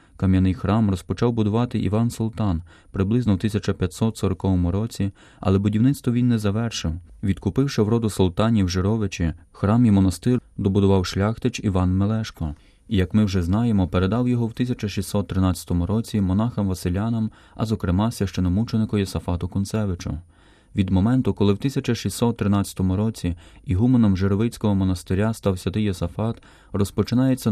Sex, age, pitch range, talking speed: male, 20-39, 95-115 Hz, 120 wpm